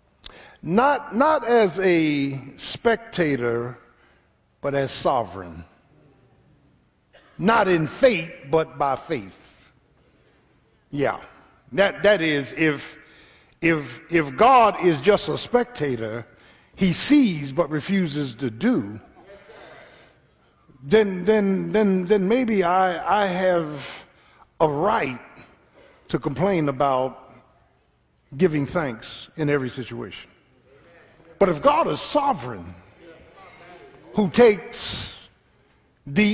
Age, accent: 50-69, American